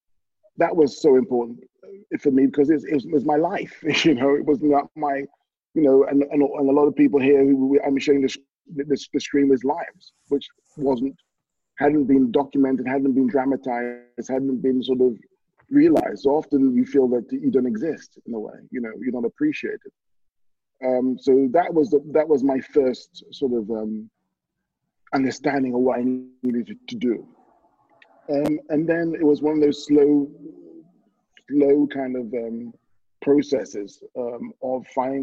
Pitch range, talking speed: 125-150 Hz, 165 wpm